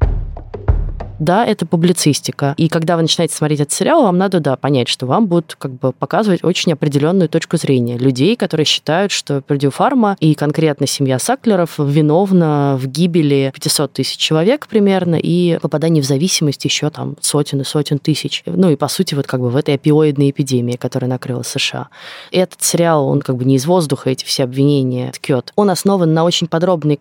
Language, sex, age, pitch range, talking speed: Russian, female, 20-39, 140-170 Hz, 180 wpm